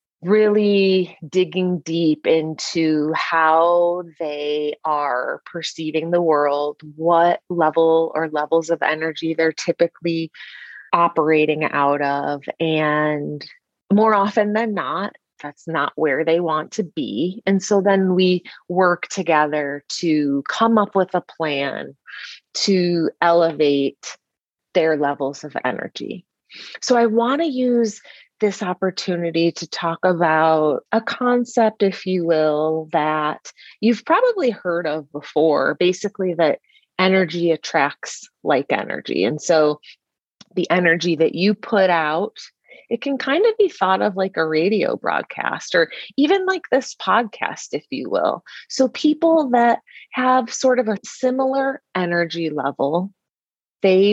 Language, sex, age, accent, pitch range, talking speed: English, female, 30-49, American, 155-210 Hz, 130 wpm